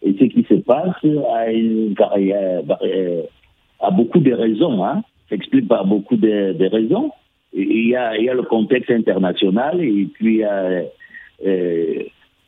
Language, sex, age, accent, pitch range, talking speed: French, male, 60-79, French, 120-190 Hz, 145 wpm